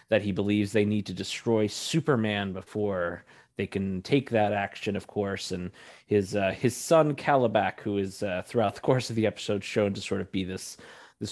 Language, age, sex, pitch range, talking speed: English, 30-49, male, 95-120 Hz, 200 wpm